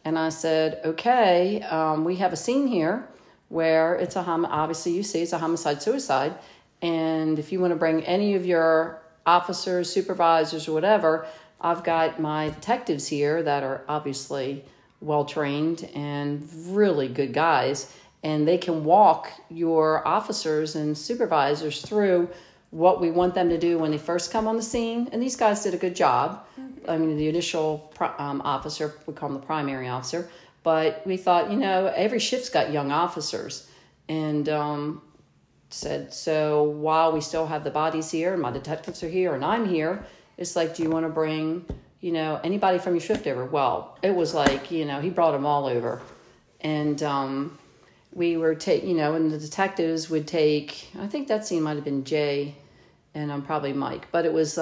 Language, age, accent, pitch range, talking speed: English, 50-69, American, 150-175 Hz, 185 wpm